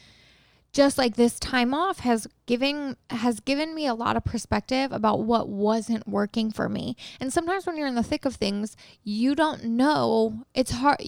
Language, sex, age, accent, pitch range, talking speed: English, female, 10-29, American, 230-285 Hz, 185 wpm